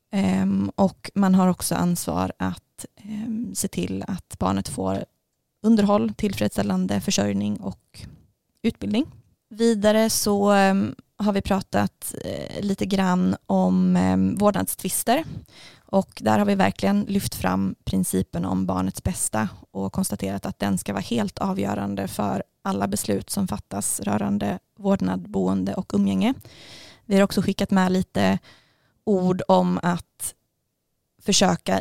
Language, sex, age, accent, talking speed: Swedish, female, 20-39, native, 120 wpm